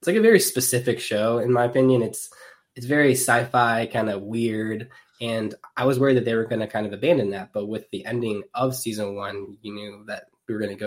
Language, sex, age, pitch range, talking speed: English, male, 10-29, 105-125 Hz, 245 wpm